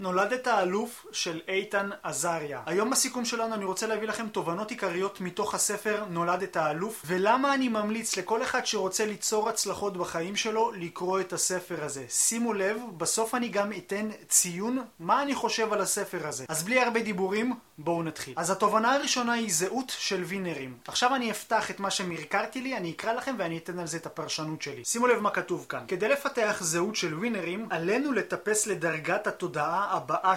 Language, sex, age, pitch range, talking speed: Hebrew, male, 30-49, 175-230 Hz, 175 wpm